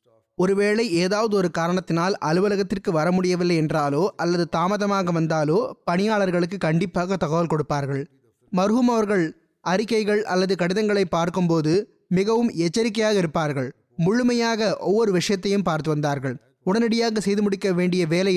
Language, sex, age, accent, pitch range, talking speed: Tamil, male, 20-39, native, 160-210 Hz, 110 wpm